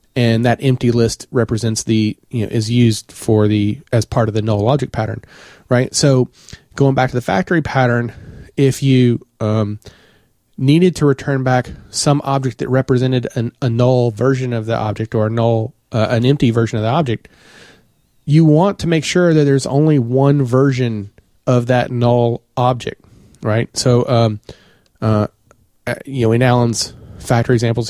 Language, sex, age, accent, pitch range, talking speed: English, male, 30-49, American, 115-140 Hz, 170 wpm